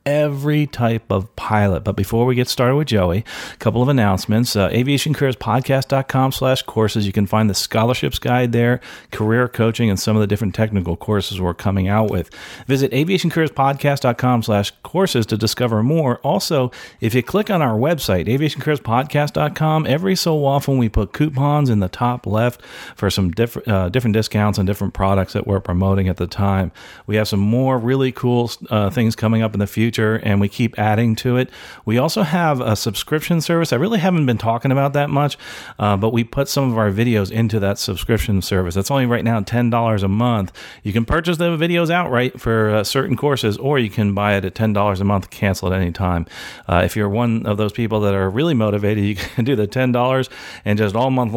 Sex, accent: male, American